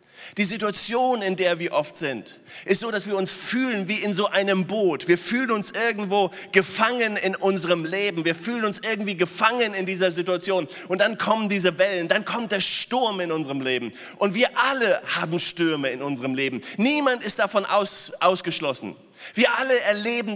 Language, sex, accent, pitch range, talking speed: German, male, German, 165-205 Hz, 185 wpm